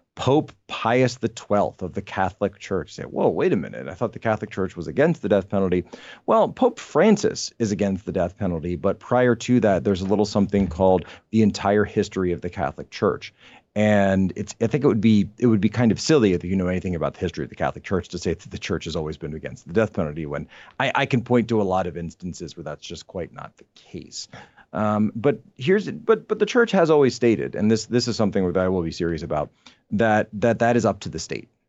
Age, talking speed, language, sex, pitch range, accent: 40-59, 240 wpm, English, male, 95-125 Hz, American